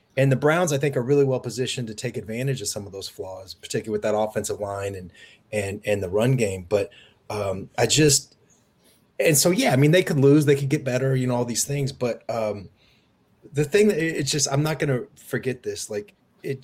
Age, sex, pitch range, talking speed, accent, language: 30-49, male, 105-140 Hz, 230 wpm, American, English